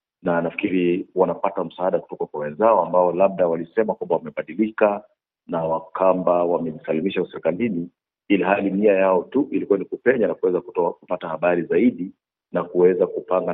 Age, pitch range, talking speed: 50-69, 90-115 Hz, 145 wpm